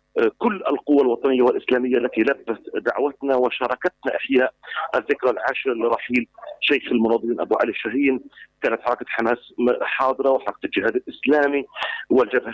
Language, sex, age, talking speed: Arabic, male, 50-69, 120 wpm